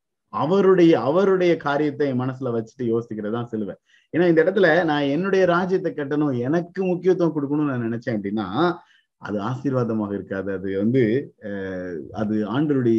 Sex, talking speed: male, 130 wpm